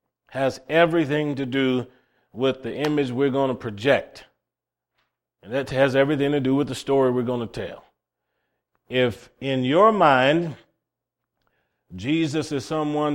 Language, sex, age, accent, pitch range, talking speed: English, male, 40-59, American, 115-140 Hz, 150 wpm